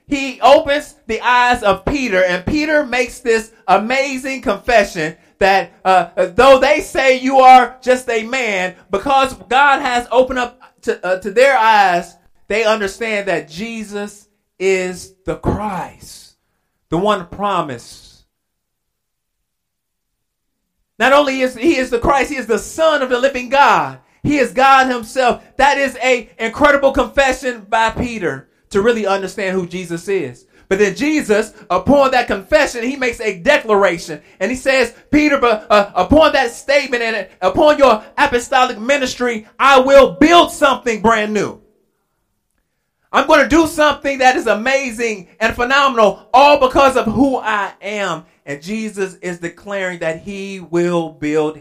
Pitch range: 195-270 Hz